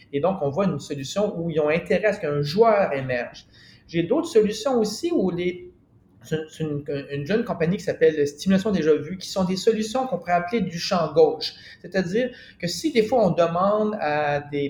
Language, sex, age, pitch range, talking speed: French, male, 40-59, 155-220 Hz, 205 wpm